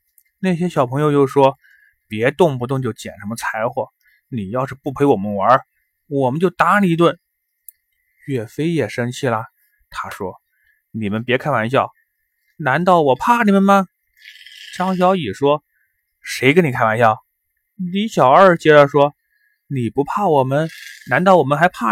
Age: 20-39